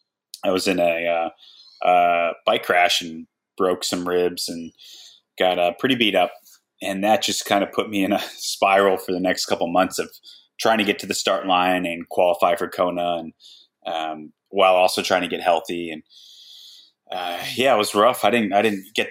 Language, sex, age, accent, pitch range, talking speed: English, male, 30-49, American, 85-95 Hz, 200 wpm